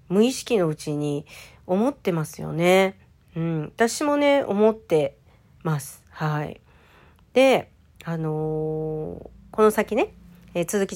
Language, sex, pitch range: Japanese, female, 150-210 Hz